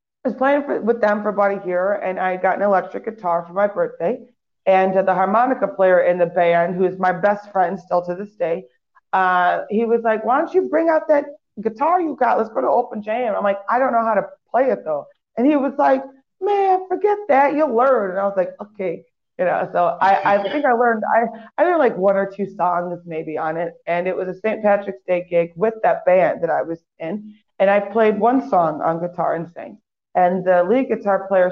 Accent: American